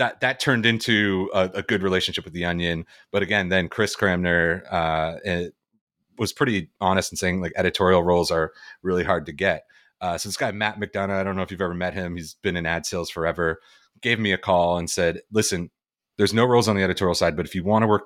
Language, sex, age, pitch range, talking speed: English, male, 30-49, 85-100 Hz, 235 wpm